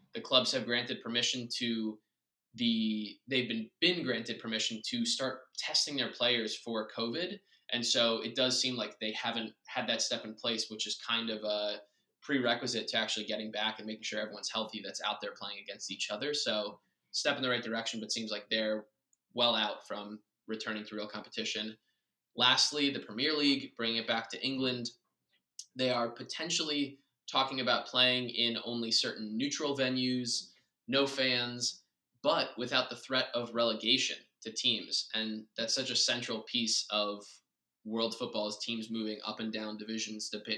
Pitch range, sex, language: 110-125 Hz, male, English